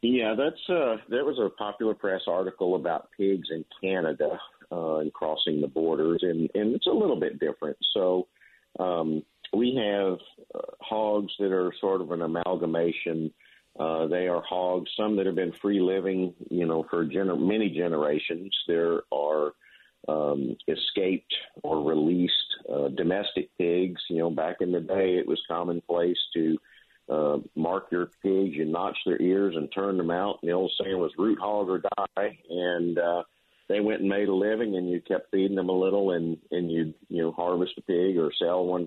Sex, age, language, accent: male, 50-69, English, American